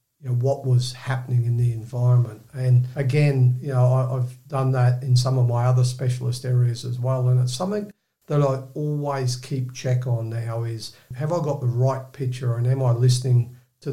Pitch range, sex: 125-135 Hz, male